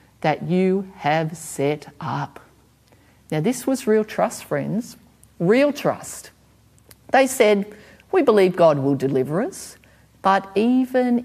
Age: 50-69